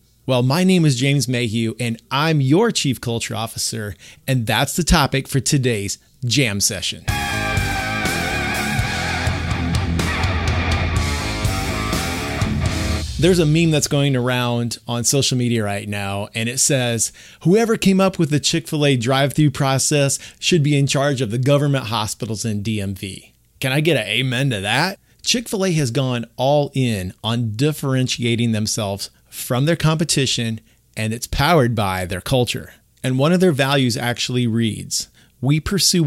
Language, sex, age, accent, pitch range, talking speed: English, male, 30-49, American, 110-145 Hz, 150 wpm